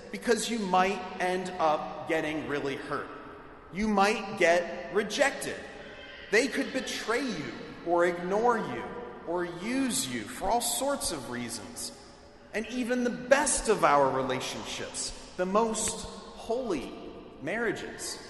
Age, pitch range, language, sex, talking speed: 30-49, 160-225 Hz, English, male, 125 wpm